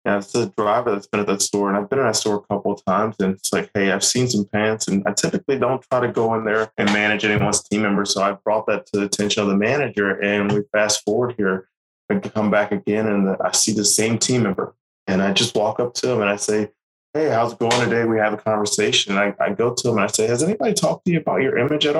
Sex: male